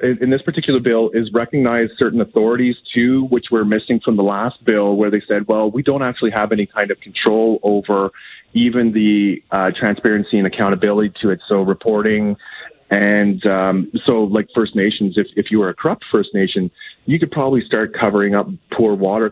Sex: male